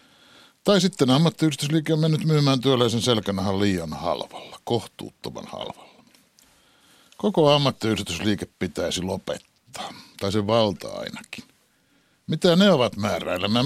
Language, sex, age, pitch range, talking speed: Finnish, male, 60-79, 100-155 Hz, 105 wpm